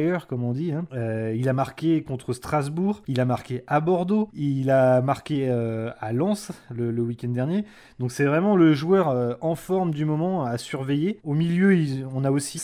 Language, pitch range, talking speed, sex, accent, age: French, 125-165 Hz, 200 wpm, male, French, 20-39